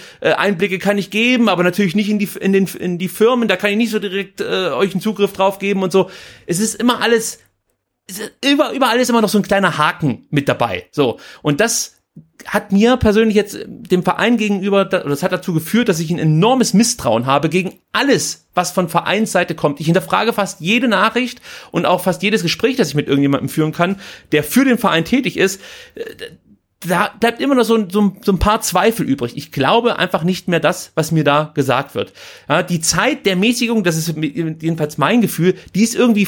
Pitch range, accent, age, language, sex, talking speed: 155-210 Hz, German, 30-49, German, male, 205 wpm